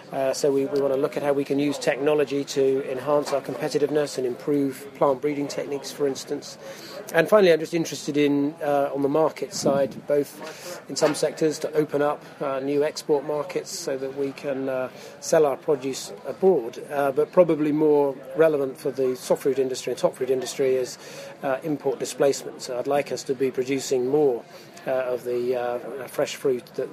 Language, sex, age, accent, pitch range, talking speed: English, male, 40-59, British, 135-155 Hz, 195 wpm